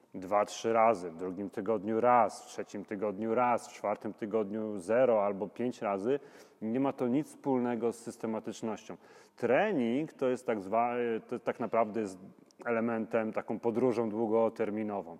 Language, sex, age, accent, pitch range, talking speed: Polish, male, 40-59, native, 105-120 Hz, 150 wpm